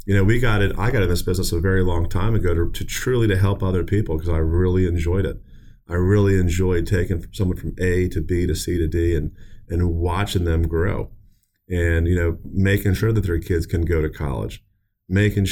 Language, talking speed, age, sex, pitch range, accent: English, 225 wpm, 30-49, male, 85-105 Hz, American